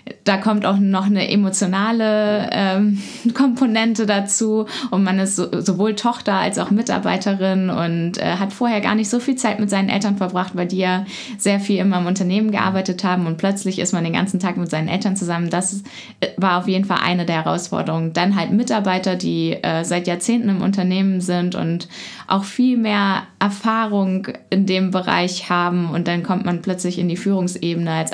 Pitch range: 175-205 Hz